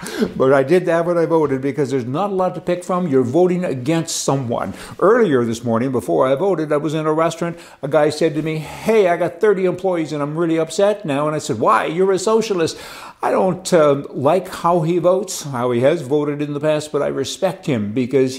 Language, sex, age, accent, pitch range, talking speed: English, male, 60-79, American, 140-180 Hz, 230 wpm